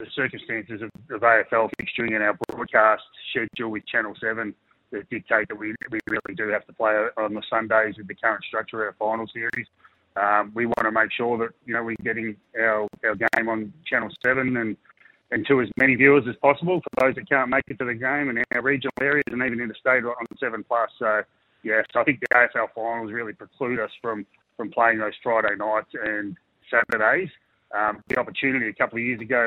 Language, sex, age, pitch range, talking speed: English, male, 30-49, 110-130 Hz, 215 wpm